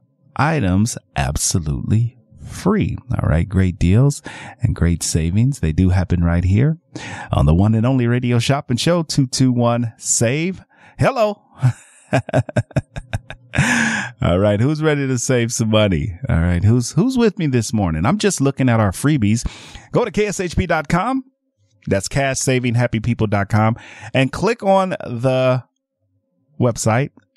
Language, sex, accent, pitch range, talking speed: English, male, American, 95-135 Hz, 140 wpm